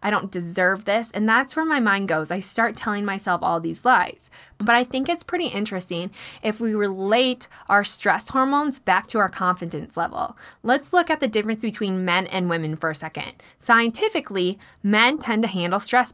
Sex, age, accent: female, 20-39, American